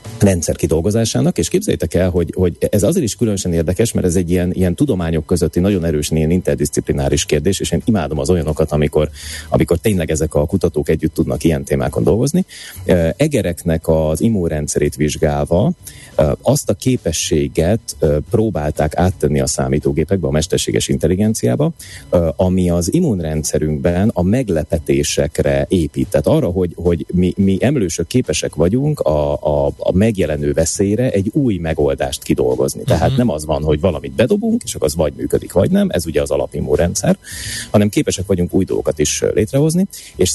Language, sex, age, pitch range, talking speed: Hungarian, male, 30-49, 75-100 Hz, 155 wpm